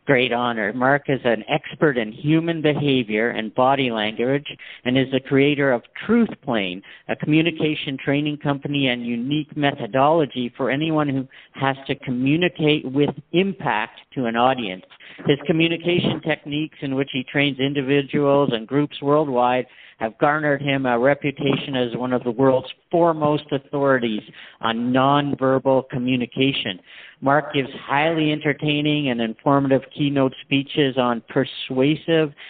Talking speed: 135 wpm